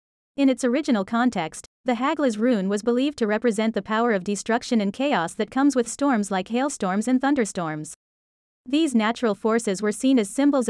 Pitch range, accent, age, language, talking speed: 205-255 Hz, American, 30-49, English, 180 wpm